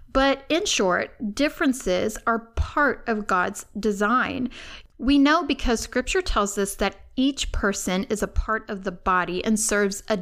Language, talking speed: English, 160 wpm